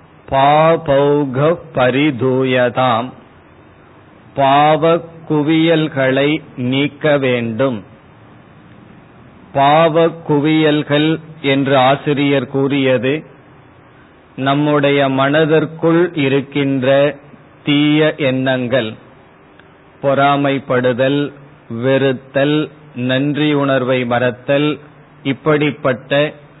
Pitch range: 135-155 Hz